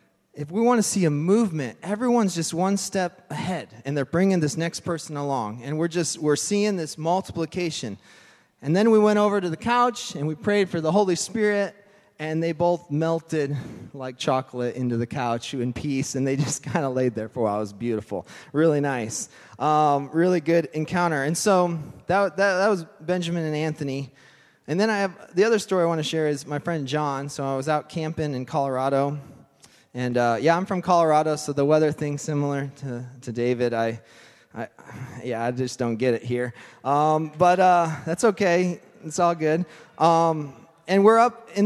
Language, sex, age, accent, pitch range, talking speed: English, male, 20-39, American, 125-170 Hz, 200 wpm